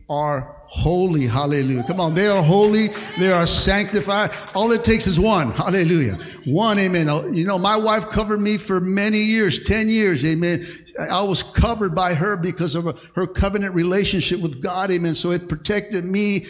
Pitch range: 145-185 Hz